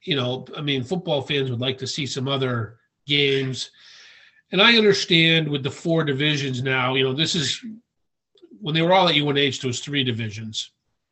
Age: 40-59